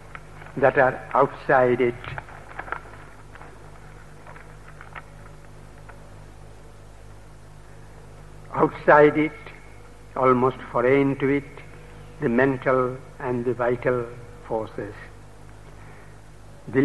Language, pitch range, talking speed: English, 125-150 Hz, 60 wpm